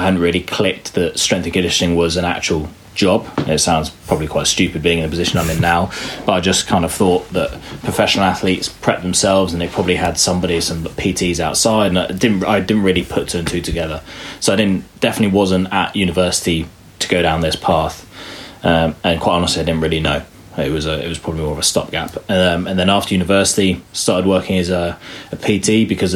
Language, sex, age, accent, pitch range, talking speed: English, male, 20-39, British, 85-100 Hz, 220 wpm